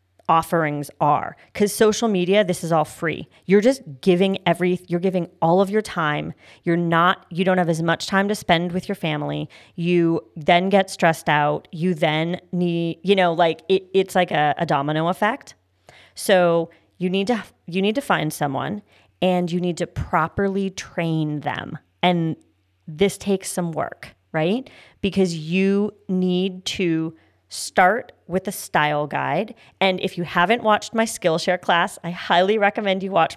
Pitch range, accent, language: 160-195 Hz, American, English